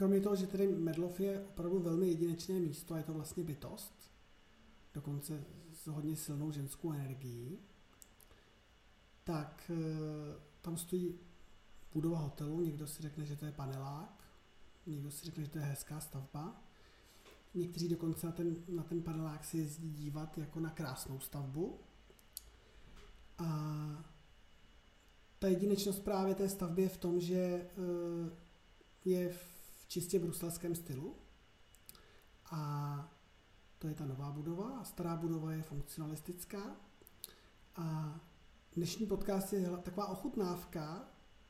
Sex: male